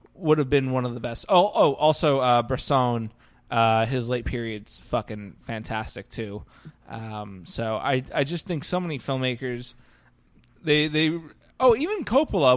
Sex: male